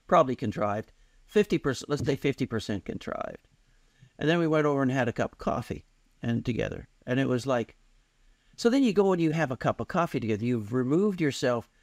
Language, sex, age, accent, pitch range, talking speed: English, male, 60-79, American, 105-140 Hz, 200 wpm